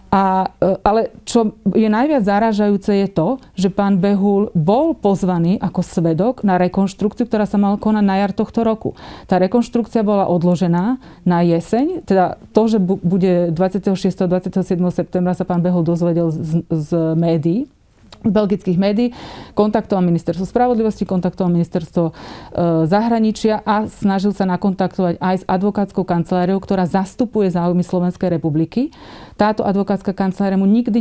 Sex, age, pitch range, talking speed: female, 30-49, 180-215 Hz, 140 wpm